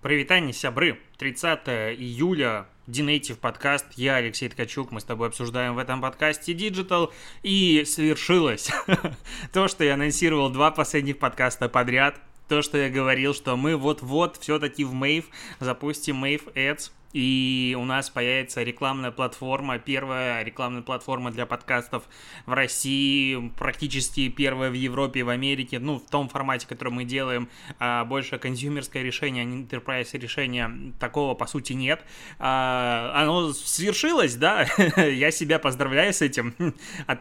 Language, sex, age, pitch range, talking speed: Russian, male, 20-39, 125-145 Hz, 135 wpm